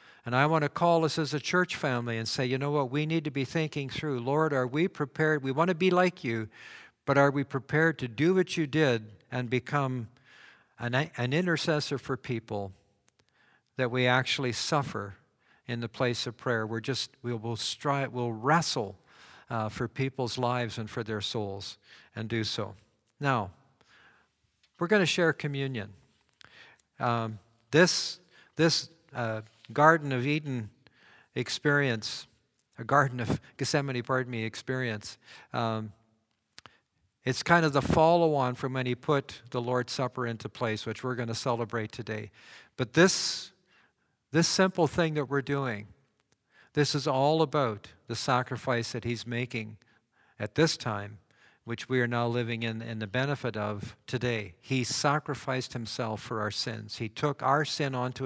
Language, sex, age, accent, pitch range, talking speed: English, male, 50-69, American, 115-145 Hz, 165 wpm